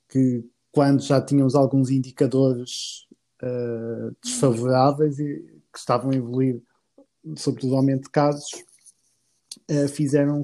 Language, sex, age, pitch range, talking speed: Portuguese, male, 20-39, 135-165 Hz, 110 wpm